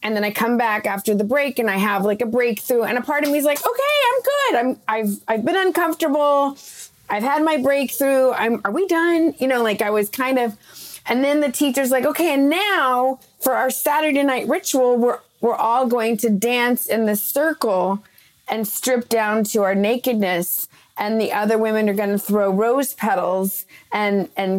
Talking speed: 205 wpm